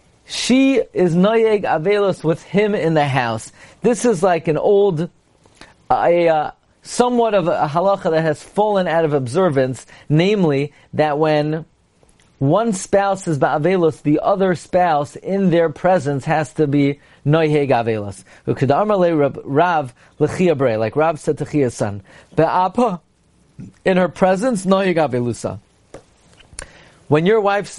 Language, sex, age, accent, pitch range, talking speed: English, male, 40-59, American, 145-190 Hz, 125 wpm